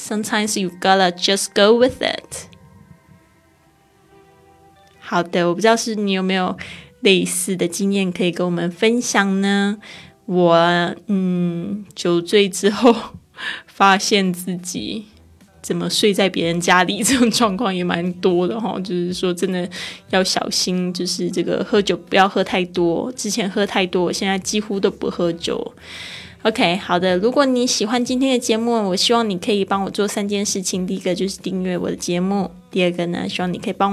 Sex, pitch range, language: female, 180-215 Hz, Chinese